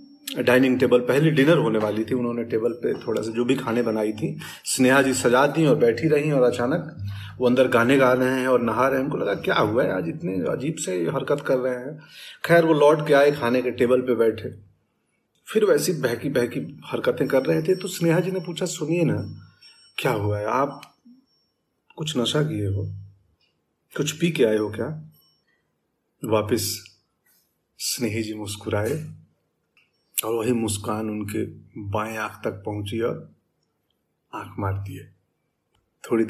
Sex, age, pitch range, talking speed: male, 30-49, 105-135 Hz, 175 wpm